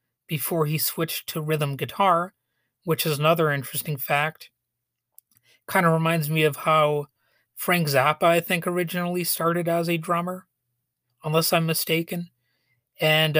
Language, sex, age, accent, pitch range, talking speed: English, male, 30-49, American, 140-175 Hz, 135 wpm